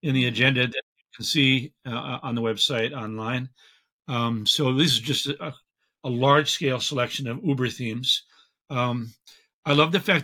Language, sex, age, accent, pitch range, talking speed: English, male, 50-69, American, 125-150 Hz, 170 wpm